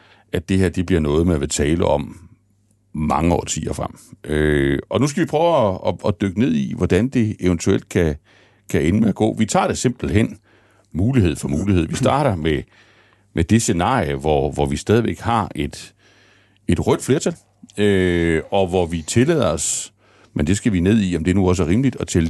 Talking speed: 205 wpm